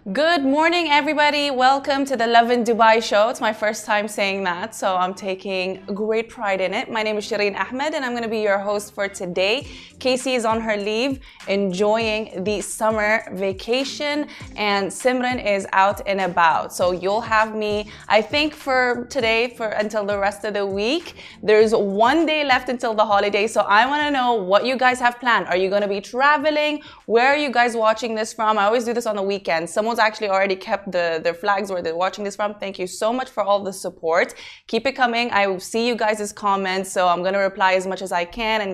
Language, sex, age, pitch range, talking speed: Arabic, female, 20-39, 190-240 Hz, 220 wpm